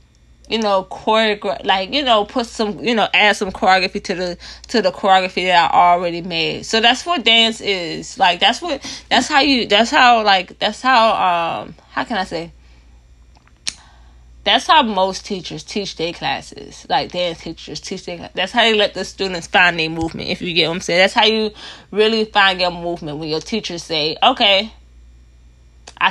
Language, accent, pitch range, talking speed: English, American, 165-220 Hz, 190 wpm